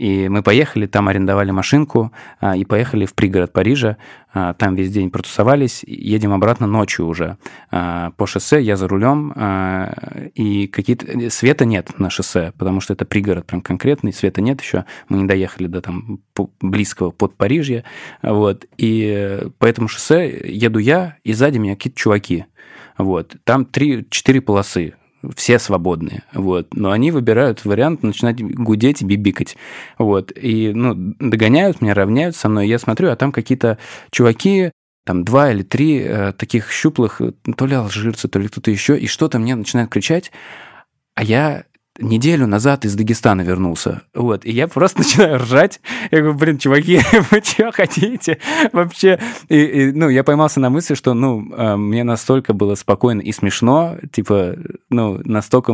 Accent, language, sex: native, Russian, male